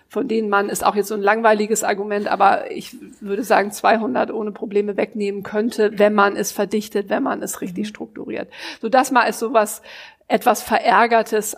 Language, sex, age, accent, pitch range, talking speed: German, female, 50-69, German, 210-245 Hz, 180 wpm